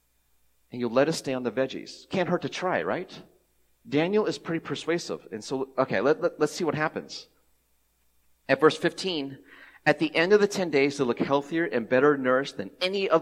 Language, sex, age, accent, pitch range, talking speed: English, male, 40-59, American, 100-160 Hz, 195 wpm